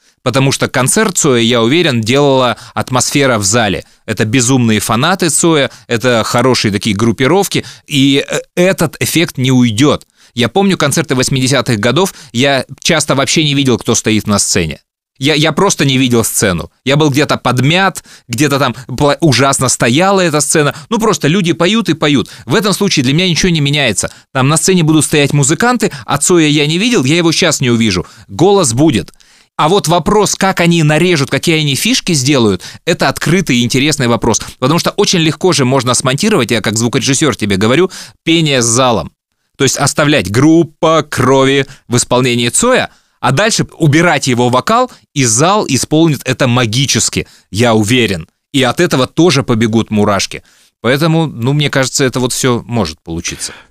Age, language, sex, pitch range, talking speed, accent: 20-39, Russian, male, 120-165 Hz, 170 wpm, native